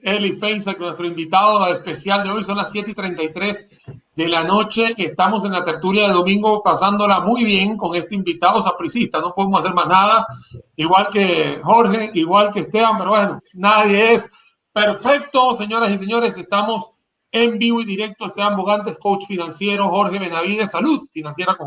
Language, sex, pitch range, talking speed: Spanish, male, 180-220 Hz, 170 wpm